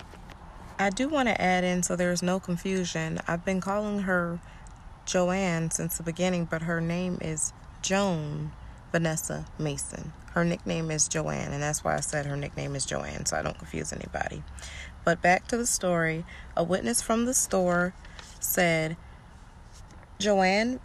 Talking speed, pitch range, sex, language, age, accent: 160 wpm, 160-185 Hz, female, English, 20-39, American